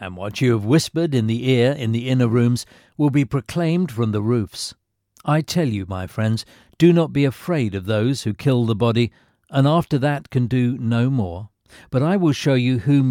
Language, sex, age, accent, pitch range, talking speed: English, male, 50-69, British, 110-145 Hz, 210 wpm